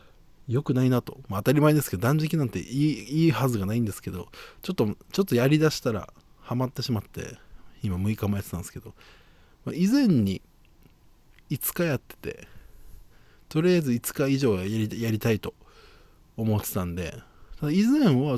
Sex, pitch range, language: male, 100-140 Hz, Japanese